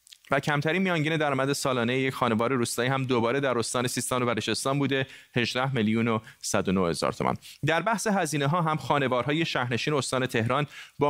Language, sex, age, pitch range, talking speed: Persian, male, 30-49, 115-140 Hz, 160 wpm